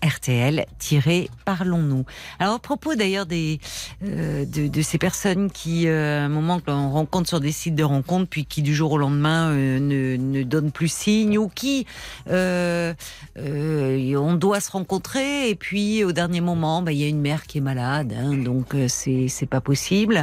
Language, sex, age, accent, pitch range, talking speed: French, female, 50-69, French, 150-195 Hz, 185 wpm